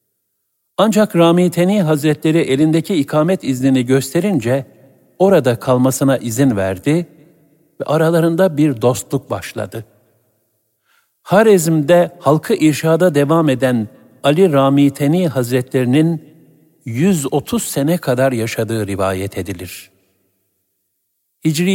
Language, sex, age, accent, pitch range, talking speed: Turkish, male, 60-79, native, 110-160 Hz, 85 wpm